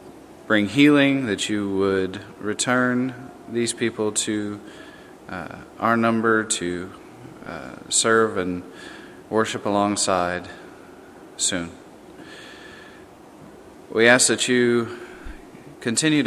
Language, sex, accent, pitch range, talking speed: English, male, American, 100-120 Hz, 90 wpm